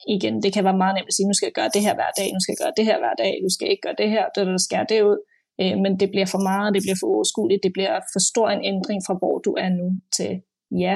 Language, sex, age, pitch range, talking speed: Danish, female, 20-39, 180-200 Hz, 320 wpm